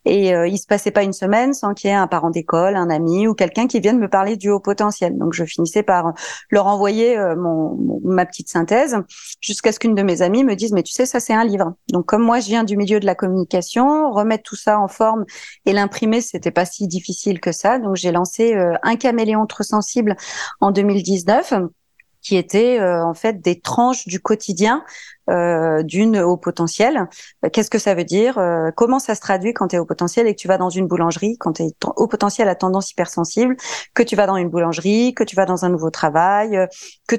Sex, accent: female, French